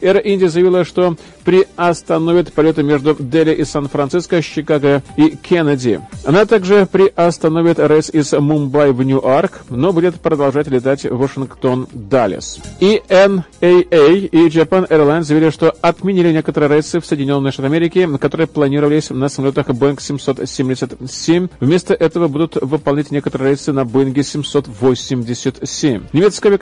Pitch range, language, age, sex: 145-170 Hz, Russian, 40-59, male